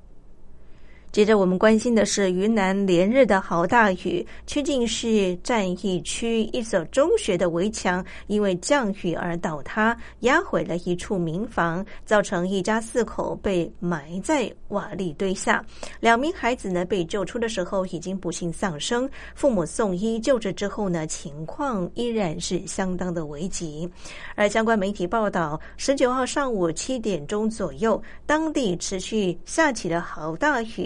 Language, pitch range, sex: Chinese, 175-225 Hz, female